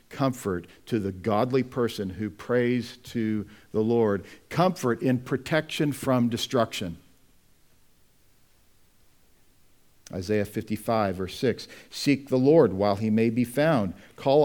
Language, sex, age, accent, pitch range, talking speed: English, male, 50-69, American, 100-125 Hz, 115 wpm